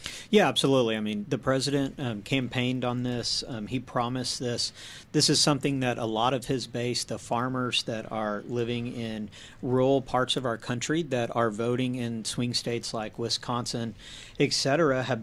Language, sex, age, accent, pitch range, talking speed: English, male, 40-59, American, 115-135 Hz, 175 wpm